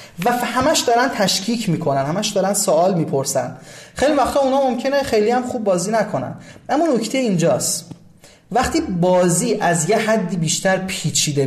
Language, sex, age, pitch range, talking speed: Persian, male, 30-49, 145-205 Hz, 145 wpm